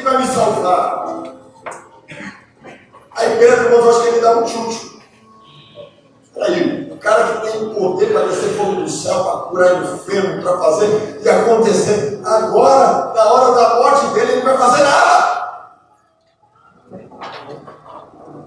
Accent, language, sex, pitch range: Brazilian, Portuguese, male, 190-285 Hz